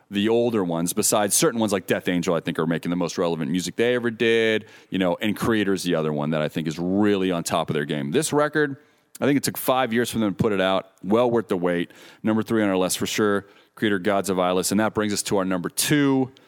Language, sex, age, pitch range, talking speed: English, male, 30-49, 90-115 Hz, 270 wpm